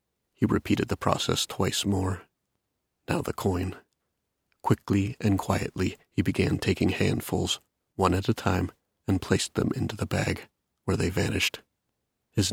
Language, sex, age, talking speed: English, male, 30-49, 145 wpm